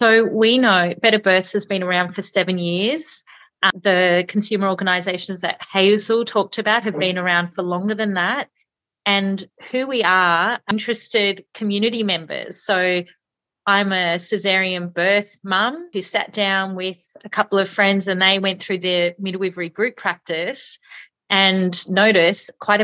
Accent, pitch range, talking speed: Australian, 175-215 Hz, 150 wpm